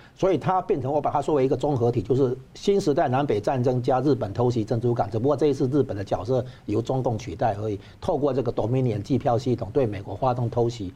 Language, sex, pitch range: Chinese, male, 110-135 Hz